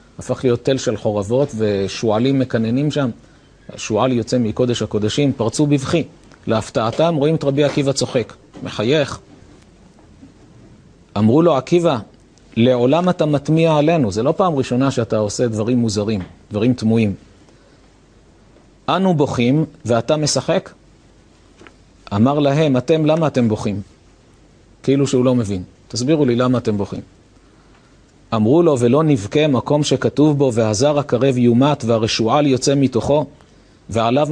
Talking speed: 125 wpm